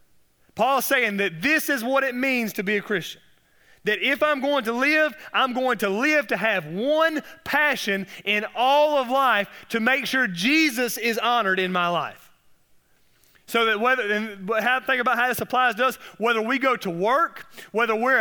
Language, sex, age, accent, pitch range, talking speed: English, male, 30-49, American, 200-265 Hz, 195 wpm